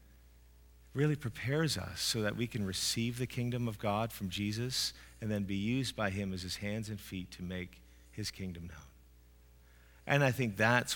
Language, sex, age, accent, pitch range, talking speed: English, male, 40-59, American, 90-115 Hz, 185 wpm